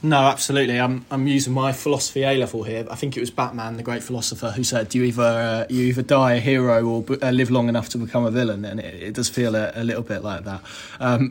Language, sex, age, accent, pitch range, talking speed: English, male, 20-39, British, 120-140 Hz, 265 wpm